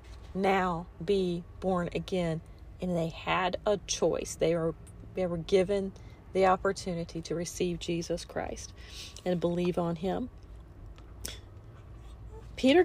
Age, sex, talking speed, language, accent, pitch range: 40-59, female, 115 wpm, English, American, 180-230 Hz